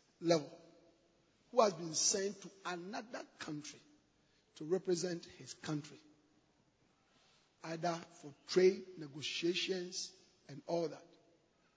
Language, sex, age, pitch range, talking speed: English, male, 50-69, 180-240 Hz, 95 wpm